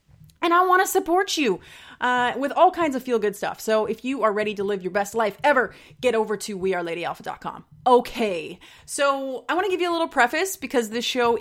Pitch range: 190-260 Hz